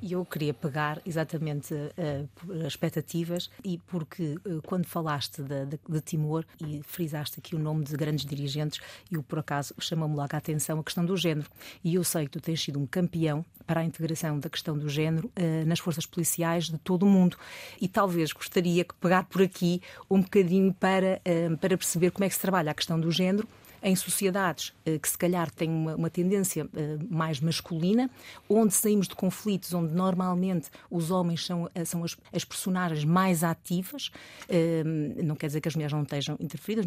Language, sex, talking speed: Portuguese, female, 200 wpm